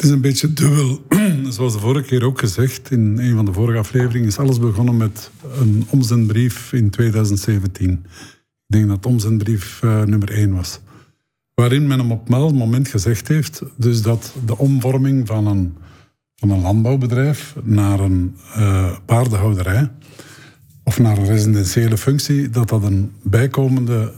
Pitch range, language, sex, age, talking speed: 110-130 Hz, English, male, 50-69, 150 wpm